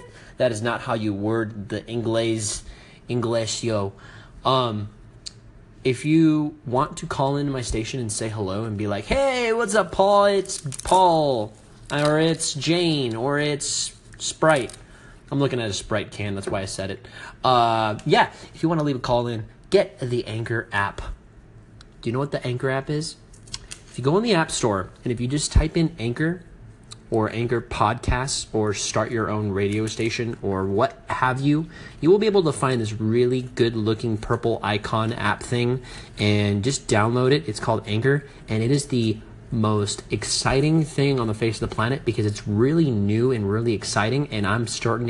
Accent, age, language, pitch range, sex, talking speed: American, 30-49, English, 110-145 Hz, male, 185 wpm